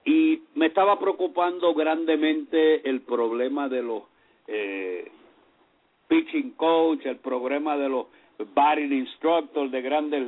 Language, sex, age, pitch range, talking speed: English, male, 60-79, 155-225 Hz, 115 wpm